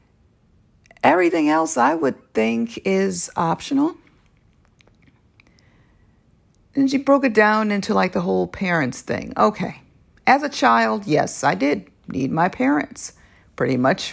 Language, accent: English, American